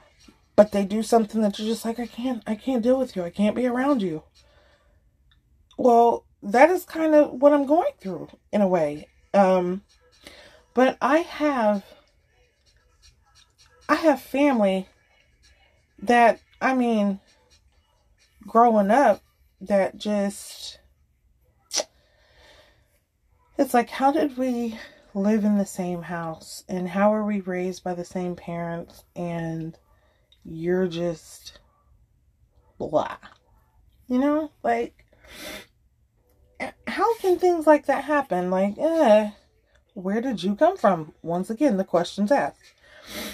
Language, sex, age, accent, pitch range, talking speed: English, female, 30-49, American, 180-255 Hz, 125 wpm